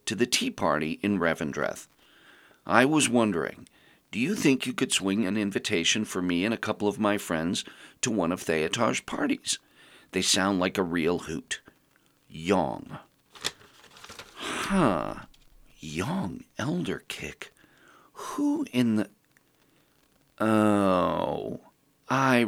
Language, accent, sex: English, American, male